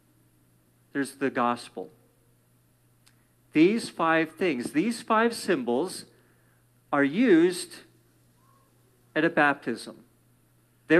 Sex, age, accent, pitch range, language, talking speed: male, 50-69, American, 135-200 Hz, English, 80 wpm